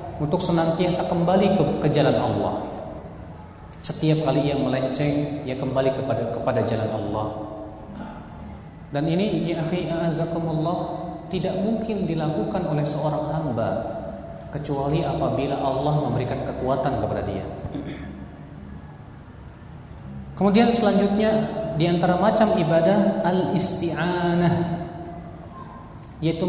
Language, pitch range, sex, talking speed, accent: Indonesian, 135-175 Hz, male, 95 wpm, native